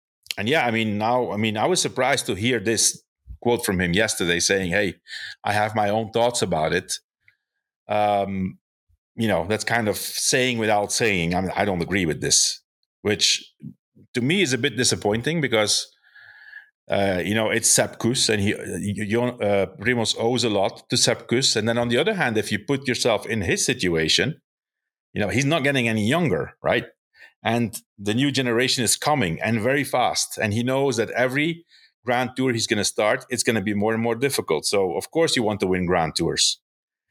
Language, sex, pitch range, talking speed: English, male, 105-125 Hz, 200 wpm